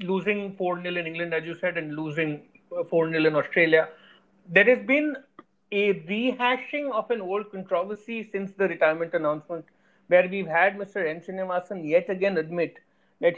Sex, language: male, Hindi